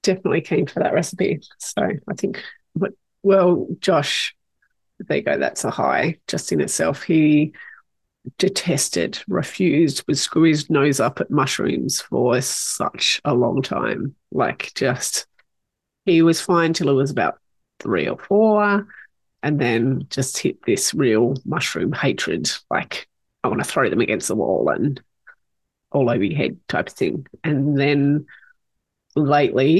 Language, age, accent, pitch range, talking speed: English, 30-49, Australian, 155-195 Hz, 150 wpm